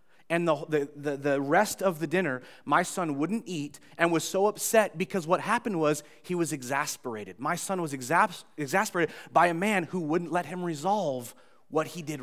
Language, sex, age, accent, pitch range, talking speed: English, male, 30-49, American, 160-205 Hz, 185 wpm